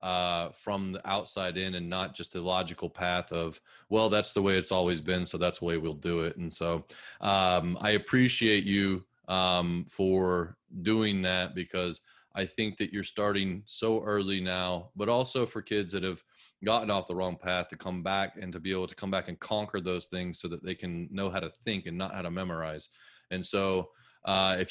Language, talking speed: English, 210 wpm